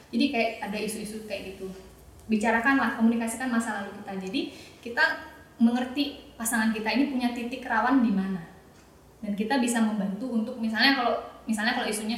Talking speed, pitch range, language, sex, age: 160 wpm, 200-235 Hz, Indonesian, female, 20-39